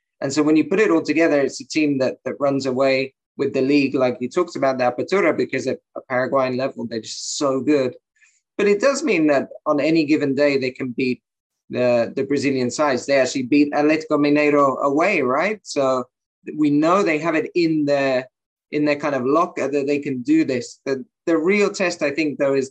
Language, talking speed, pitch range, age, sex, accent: English, 215 wpm, 135-165 Hz, 20-39, male, British